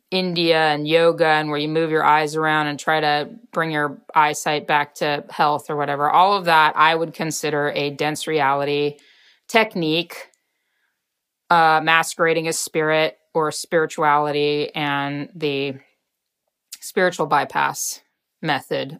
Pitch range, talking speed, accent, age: 150-170 Hz, 135 wpm, American, 30-49